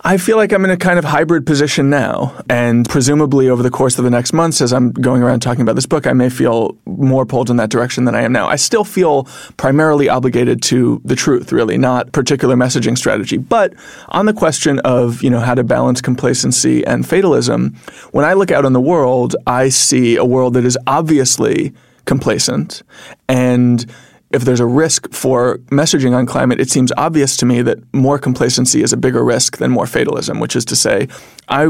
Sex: male